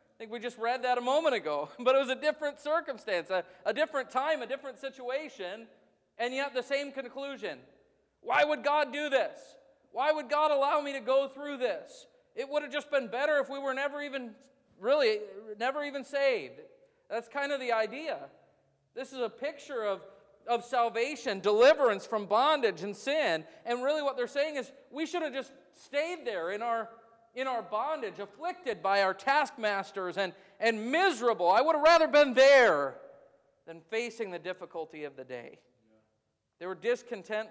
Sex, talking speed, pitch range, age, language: male, 180 wpm, 195-280 Hz, 40-59, English